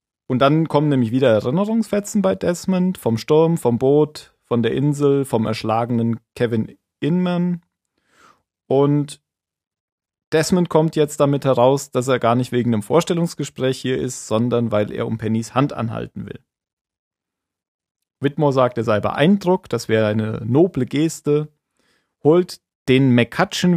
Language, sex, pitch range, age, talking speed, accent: German, male, 110-145 Hz, 40-59, 140 wpm, German